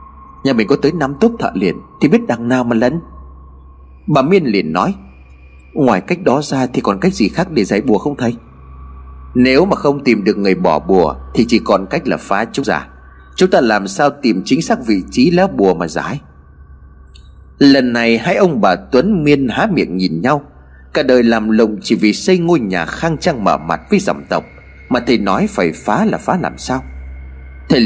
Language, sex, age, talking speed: Vietnamese, male, 30-49, 210 wpm